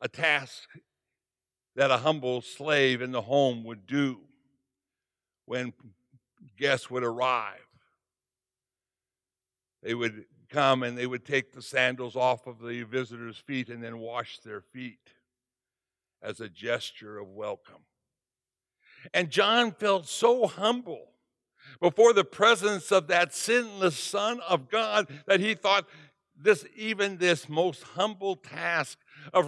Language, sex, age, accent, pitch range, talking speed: English, male, 60-79, American, 125-185 Hz, 130 wpm